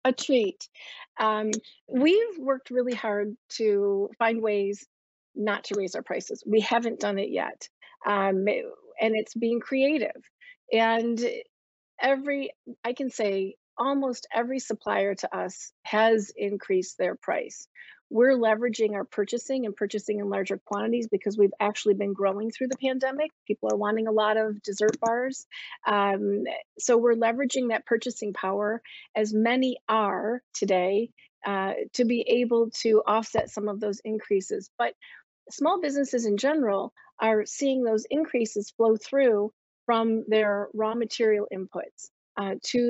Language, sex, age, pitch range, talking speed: English, female, 40-59, 205-255 Hz, 145 wpm